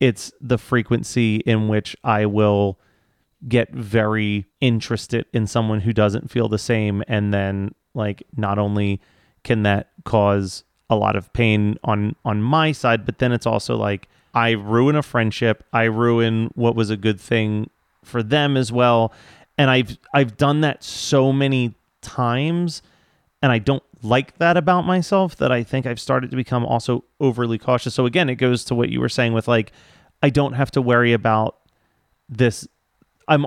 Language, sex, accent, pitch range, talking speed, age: English, male, American, 110-130 Hz, 175 wpm, 30-49